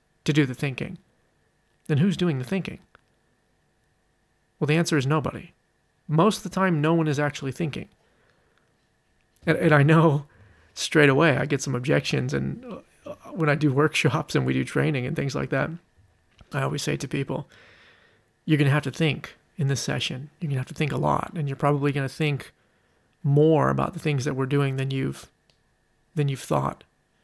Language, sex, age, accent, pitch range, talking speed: English, male, 40-59, American, 135-160 Hz, 185 wpm